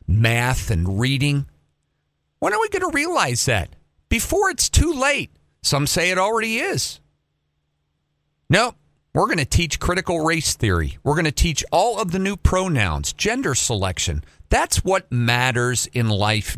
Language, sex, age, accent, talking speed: English, male, 50-69, American, 155 wpm